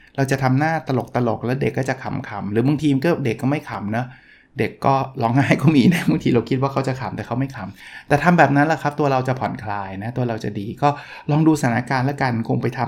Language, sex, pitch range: Thai, male, 115-150 Hz